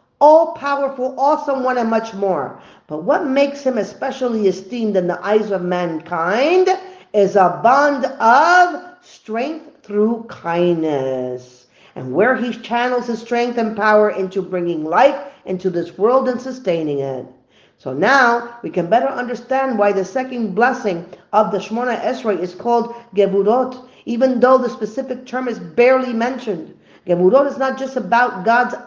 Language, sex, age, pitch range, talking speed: English, female, 50-69, 190-250 Hz, 150 wpm